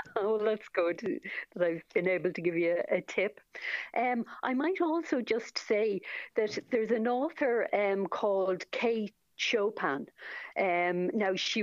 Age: 50-69